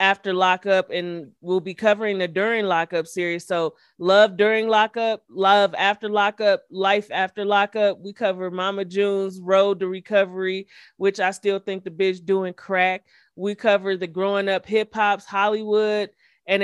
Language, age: English, 30-49